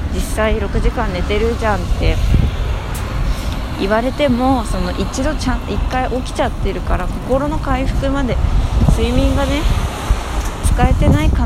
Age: 20-39